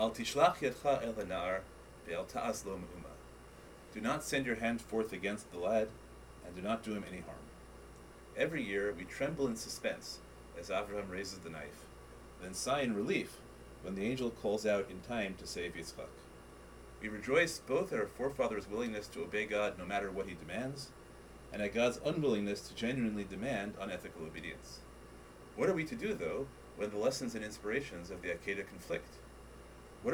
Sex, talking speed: male, 160 wpm